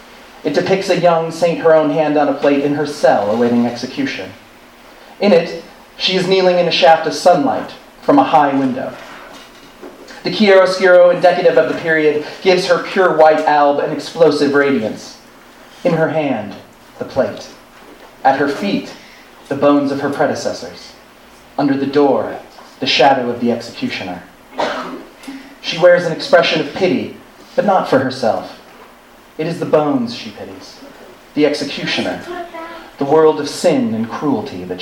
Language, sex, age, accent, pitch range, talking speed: English, male, 30-49, American, 135-175 Hz, 155 wpm